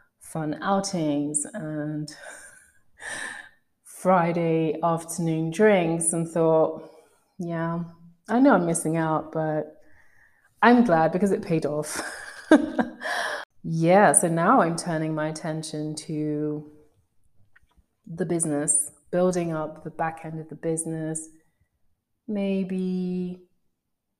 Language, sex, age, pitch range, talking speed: English, female, 30-49, 155-180 Hz, 100 wpm